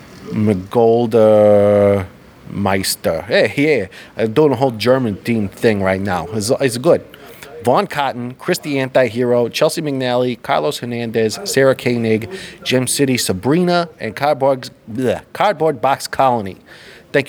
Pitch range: 115-145 Hz